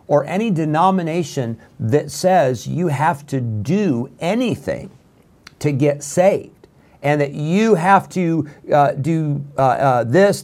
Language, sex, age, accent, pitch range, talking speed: English, male, 50-69, American, 140-180 Hz, 130 wpm